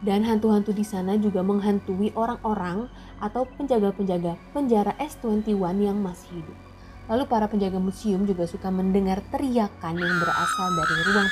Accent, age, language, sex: native, 20-39, Indonesian, female